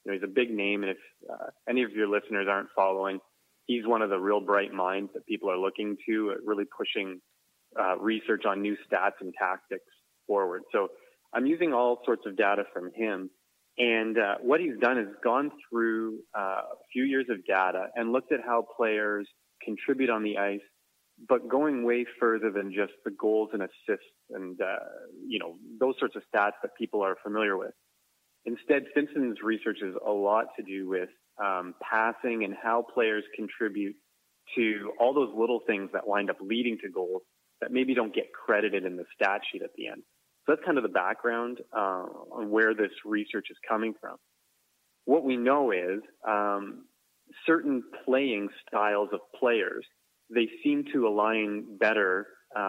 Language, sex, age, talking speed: English, male, 30-49, 185 wpm